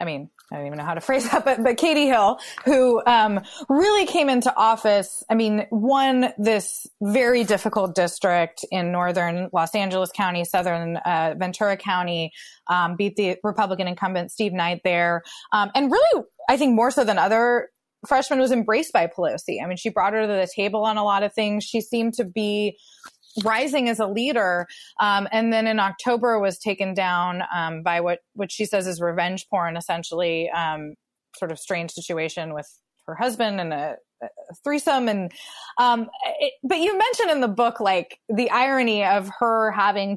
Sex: female